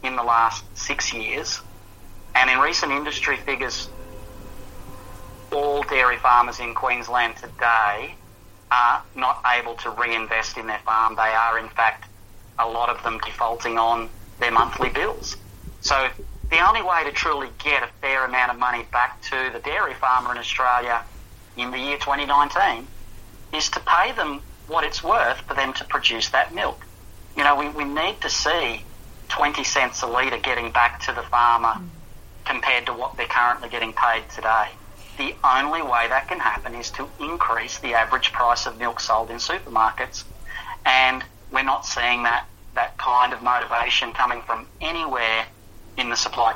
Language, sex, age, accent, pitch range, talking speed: English, male, 40-59, Australian, 110-130 Hz, 165 wpm